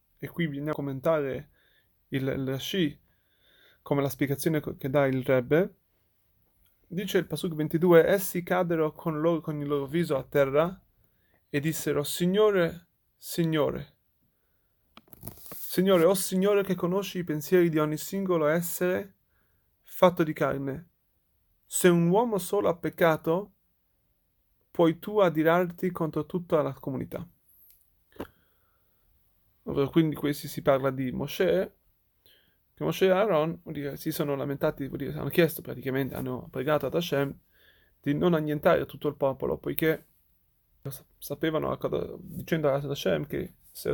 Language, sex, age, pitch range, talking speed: Italian, male, 30-49, 140-175 Hz, 130 wpm